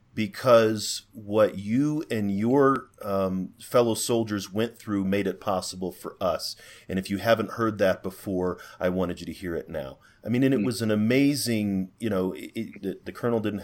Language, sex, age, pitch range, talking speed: English, male, 30-49, 100-115 Hz, 180 wpm